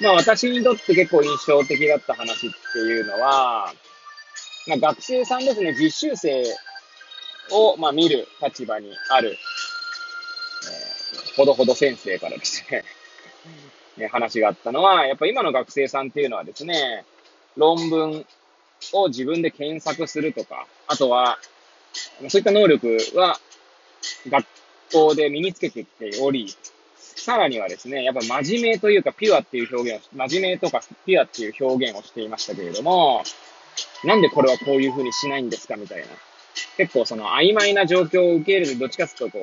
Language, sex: Japanese, male